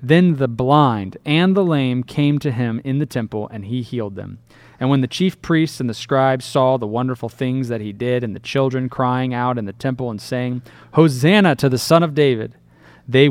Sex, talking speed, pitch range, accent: male, 215 wpm, 110-140 Hz, American